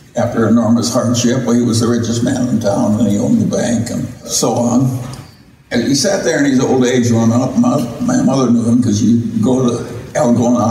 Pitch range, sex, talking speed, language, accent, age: 120-135 Hz, male, 220 wpm, English, American, 60-79